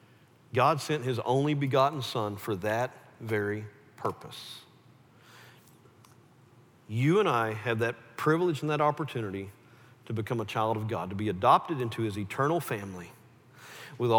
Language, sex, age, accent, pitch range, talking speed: English, male, 40-59, American, 115-150 Hz, 140 wpm